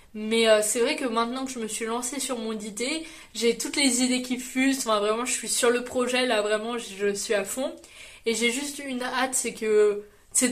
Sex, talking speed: female, 230 wpm